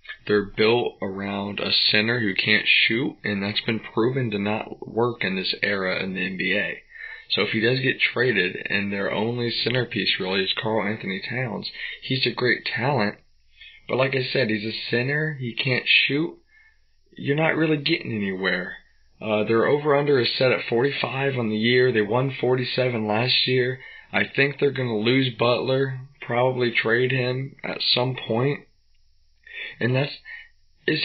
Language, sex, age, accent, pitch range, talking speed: English, male, 20-39, American, 110-140 Hz, 165 wpm